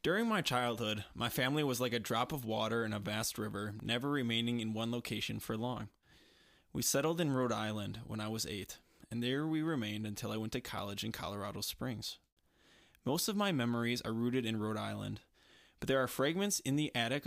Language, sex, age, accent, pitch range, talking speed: English, male, 20-39, American, 110-125 Hz, 205 wpm